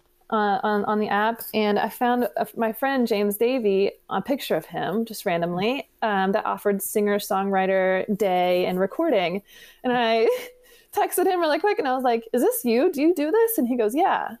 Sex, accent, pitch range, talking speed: female, American, 205-270 Hz, 190 wpm